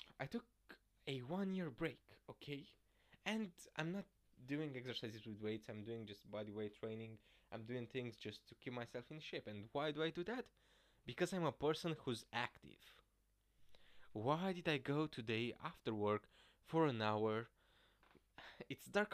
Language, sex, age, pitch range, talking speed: English, male, 20-39, 115-165 Hz, 165 wpm